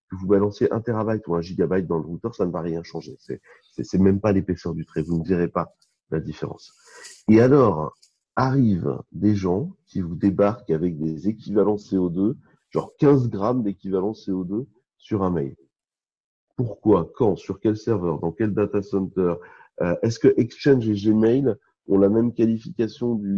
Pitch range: 90-115 Hz